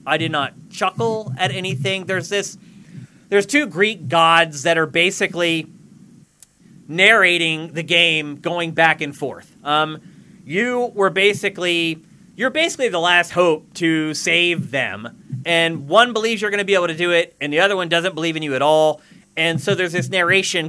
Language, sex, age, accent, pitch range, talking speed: English, male, 30-49, American, 155-200 Hz, 175 wpm